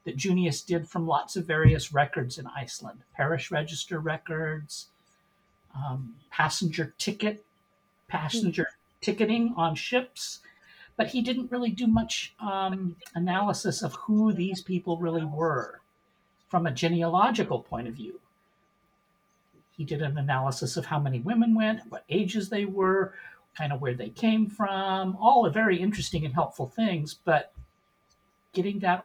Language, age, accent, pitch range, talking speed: English, 50-69, American, 150-195 Hz, 145 wpm